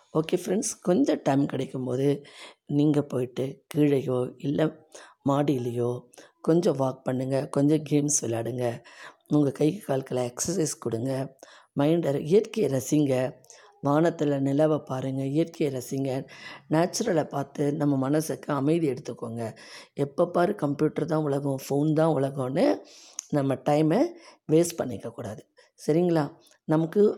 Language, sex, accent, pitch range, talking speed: Tamil, female, native, 140-170 Hz, 110 wpm